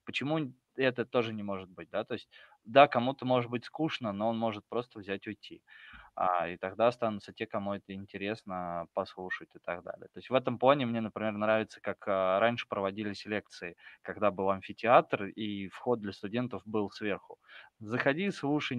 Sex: male